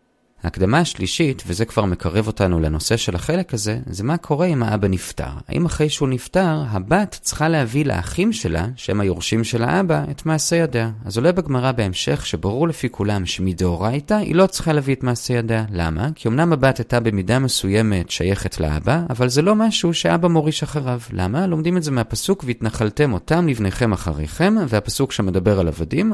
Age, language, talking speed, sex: 30-49, Hebrew, 180 wpm, male